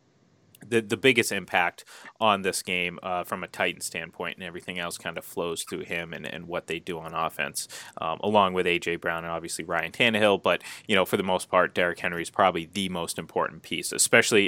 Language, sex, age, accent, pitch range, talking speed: English, male, 30-49, American, 95-115 Hz, 215 wpm